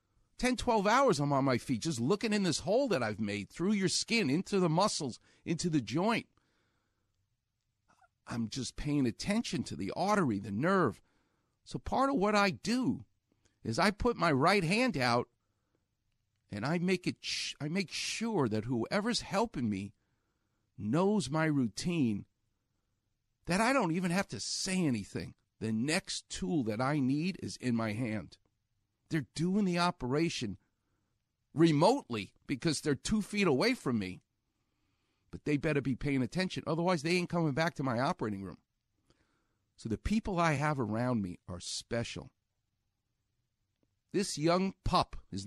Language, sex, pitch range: English, male, 110-170 Hz